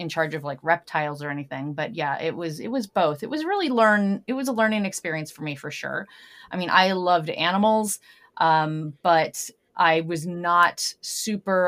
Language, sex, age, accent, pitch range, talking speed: English, female, 30-49, American, 160-205 Hz, 195 wpm